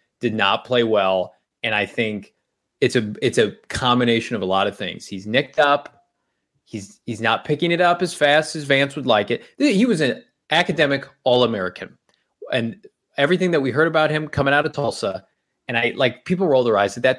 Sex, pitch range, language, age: male, 120-170 Hz, English, 20-39